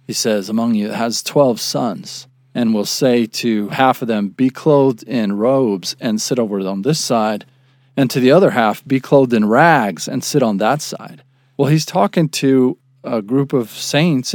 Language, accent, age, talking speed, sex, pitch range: English, American, 40-59, 190 wpm, male, 125-155 Hz